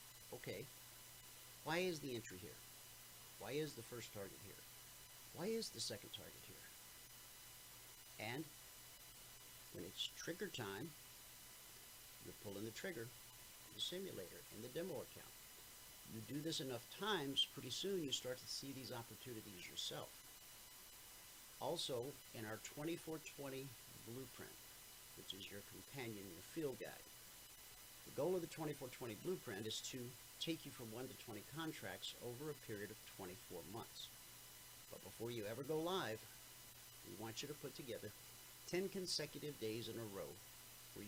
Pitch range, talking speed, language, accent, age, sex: 110-150 Hz, 145 wpm, English, American, 50-69, male